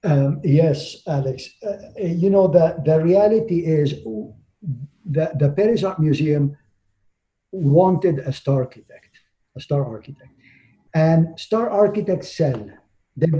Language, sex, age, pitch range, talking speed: English, male, 50-69, 140-180 Hz, 120 wpm